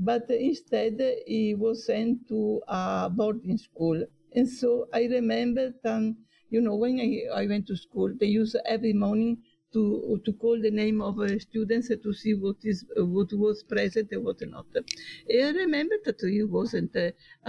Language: English